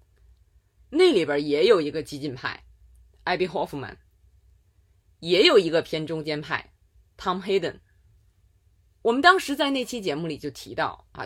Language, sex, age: Chinese, female, 20-39